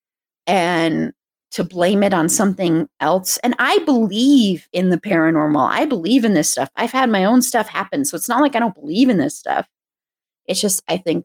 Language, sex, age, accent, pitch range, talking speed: English, female, 30-49, American, 175-250 Hz, 205 wpm